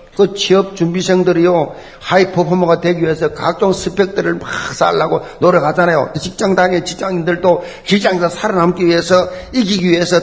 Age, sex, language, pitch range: 50-69, male, Korean, 130-210 Hz